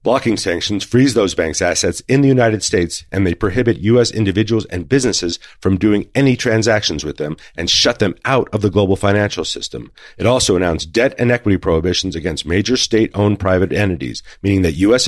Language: English